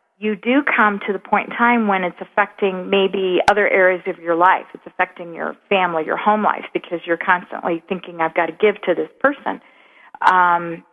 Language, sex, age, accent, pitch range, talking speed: English, female, 40-59, American, 175-205 Hz, 200 wpm